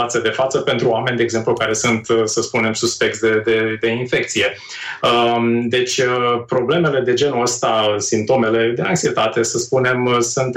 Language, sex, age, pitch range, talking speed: Romanian, male, 30-49, 120-165 Hz, 150 wpm